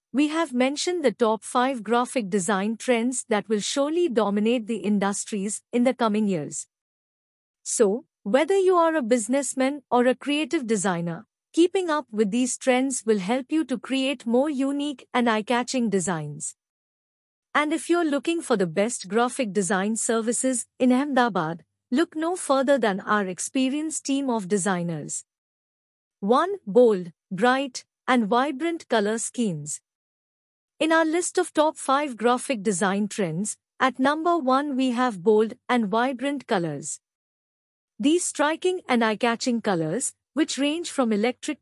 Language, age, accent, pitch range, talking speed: English, 50-69, Indian, 215-275 Hz, 145 wpm